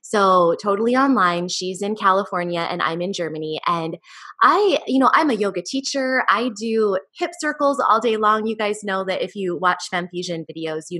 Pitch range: 170-215 Hz